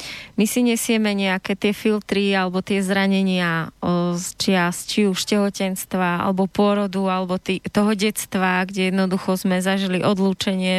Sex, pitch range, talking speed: female, 190-220 Hz, 130 wpm